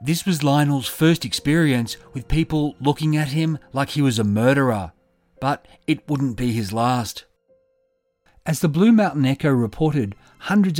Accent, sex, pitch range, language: Australian, male, 120-160 Hz, English